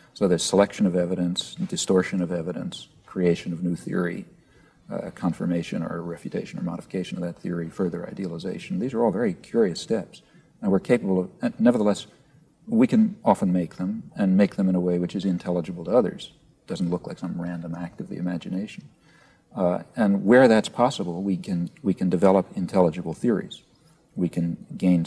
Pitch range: 90-100 Hz